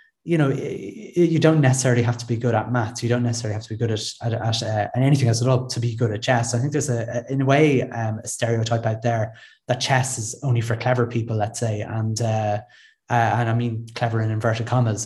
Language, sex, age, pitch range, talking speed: English, male, 20-39, 110-125 Hz, 255 wpm